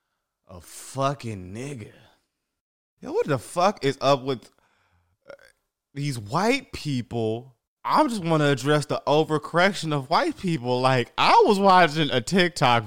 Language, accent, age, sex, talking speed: English, American, 20-39, male, 140 wpm